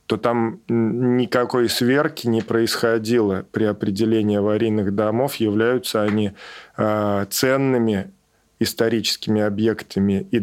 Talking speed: 100 wpm